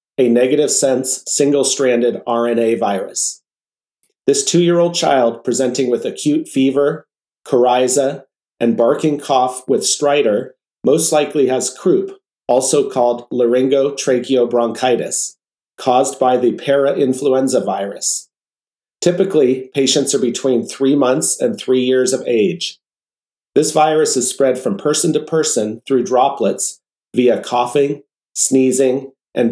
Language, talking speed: English, 115 wpm